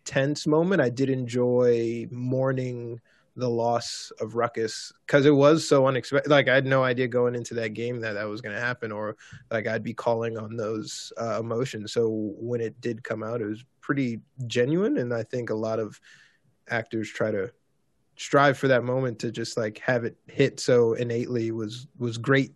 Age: 20-39